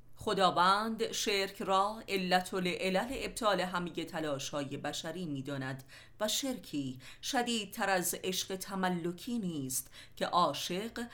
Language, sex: Persian, female